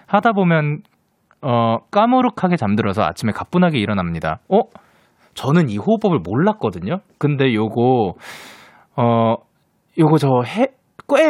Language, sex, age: Korean, male, 20-39